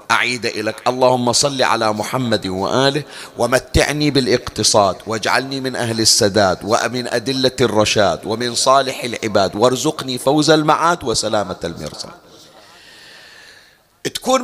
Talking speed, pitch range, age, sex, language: 105 wpm, 140-230 Hz, 40-59, male, Arabic